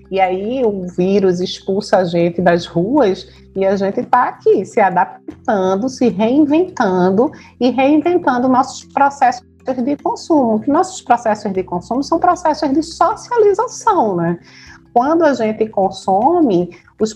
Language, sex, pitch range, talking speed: Portuguese, female, 185-275 Hz, 135 wpm